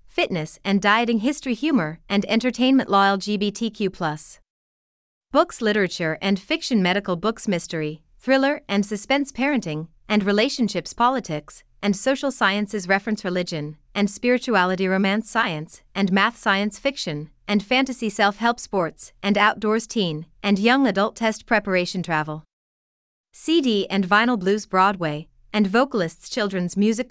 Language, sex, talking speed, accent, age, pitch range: English, female, 130 wpm, American, 30-49, 180-230 Hz